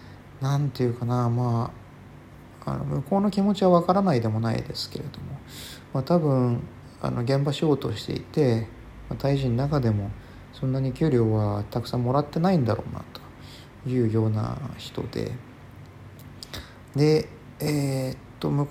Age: 40-59